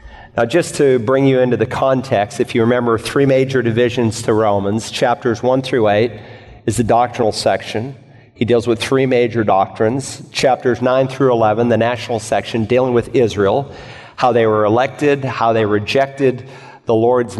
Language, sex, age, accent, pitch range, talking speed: English, male, 40-59, American, 115-130 Hz, 170 wpm